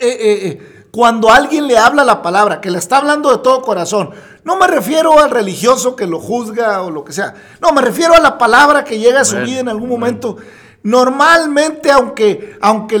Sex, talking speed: male, 210 wpm